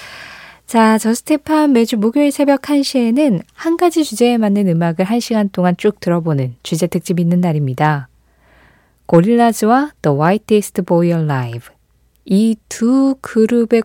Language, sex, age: Korean, female, 20-39